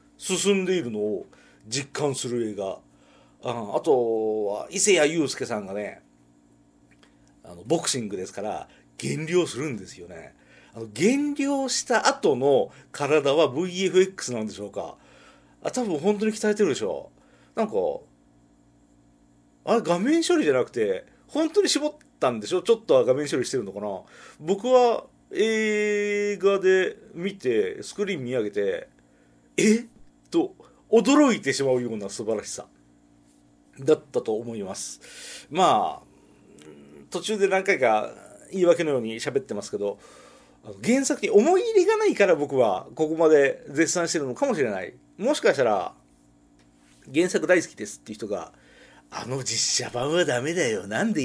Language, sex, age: Japanese, male, 40-59